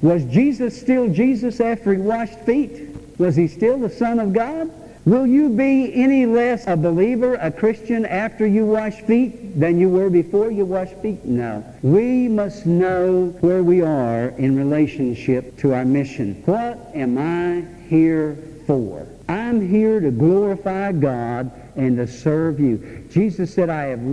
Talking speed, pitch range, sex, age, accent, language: 160 wpm, 140-215 Hz, male, 60-79, American, English